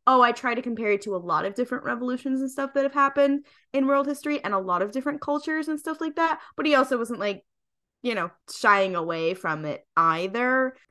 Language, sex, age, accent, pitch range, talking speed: English, female, 10-29, American, 180-235 Hz, 230 wpm